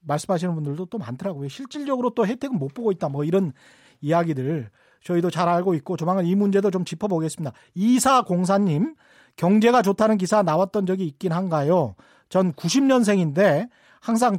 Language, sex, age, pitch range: Korean, male, 40-59, 175-235 Hz